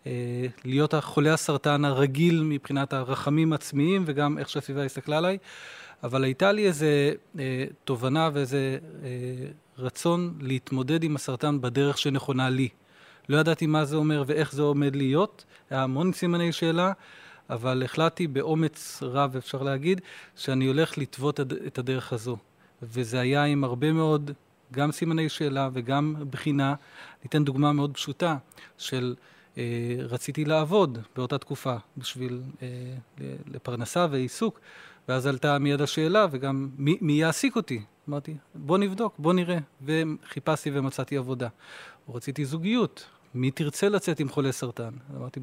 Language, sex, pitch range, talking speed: Hebrew, male, 135-160 Hz, 135 wpm